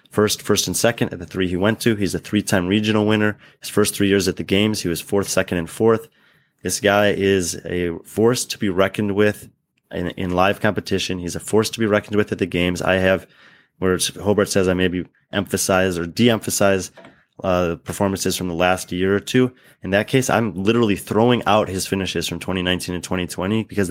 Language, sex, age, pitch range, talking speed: English, male, 20-39, 90-110 Hz, 210 wpm